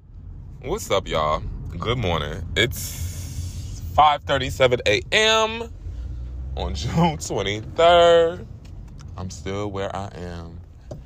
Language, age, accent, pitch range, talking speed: English, 20-39, American, 85-110 Hz, 85 wpm